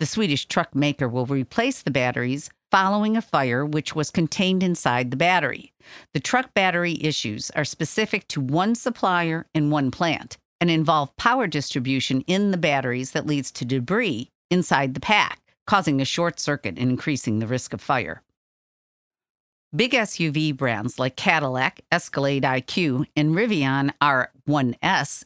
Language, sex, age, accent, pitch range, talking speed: English, female, 50-69, American, 135-180 Hz, 150 wpm